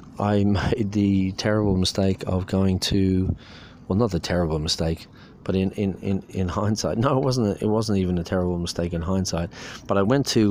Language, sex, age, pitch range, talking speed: English, male, 30-49, 90-105 Hz, 195 wpm